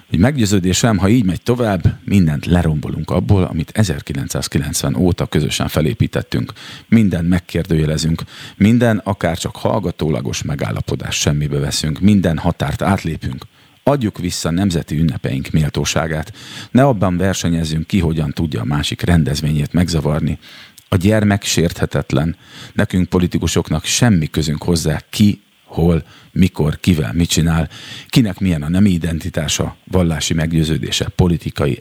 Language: Hungarian